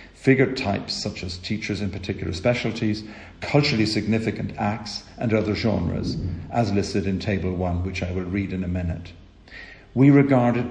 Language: English